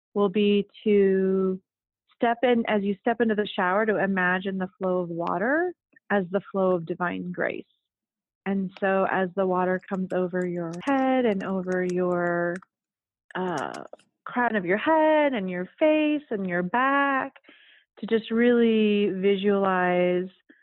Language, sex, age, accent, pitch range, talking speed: English, female, 30-49, American, 185-210 Hz, 145 wpm